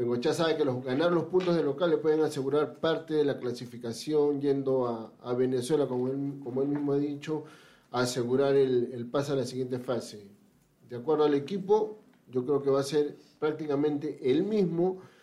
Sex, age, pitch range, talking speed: male, 40-59, 130-160 Hz, 195 wpm